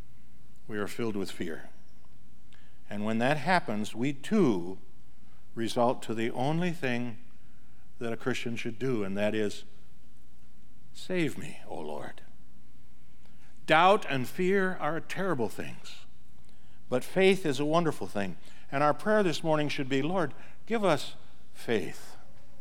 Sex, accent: male, American